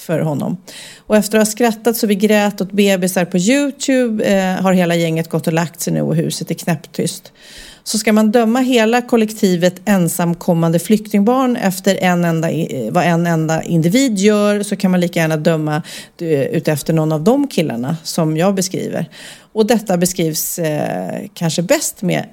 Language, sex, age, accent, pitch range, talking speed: Swedish, female, 40-59, native, 170-225 Hz, 170 wpm